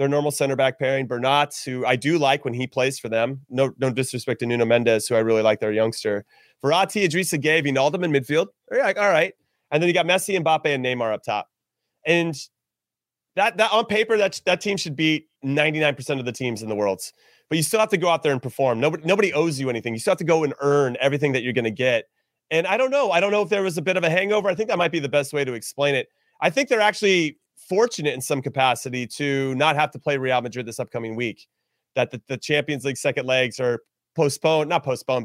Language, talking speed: English, 250 wpm